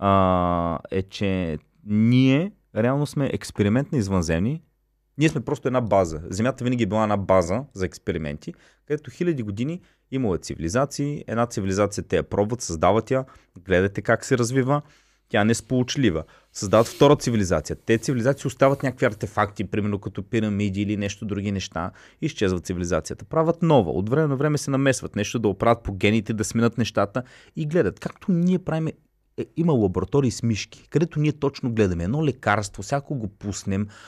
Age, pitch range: 30-49, 100-140 Hz